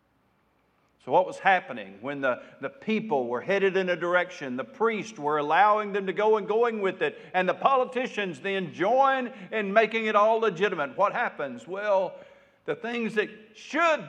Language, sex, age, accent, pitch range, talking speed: English, male, 60-79, American, 145-220 Hz, 175 wpm